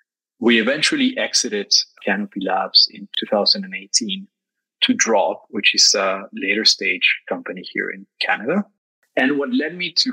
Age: 30-49